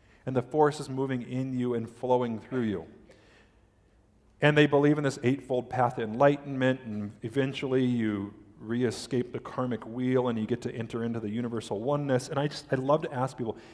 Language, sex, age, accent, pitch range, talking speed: English, male, 40-59, American, 110-145 Hz, 190 wpm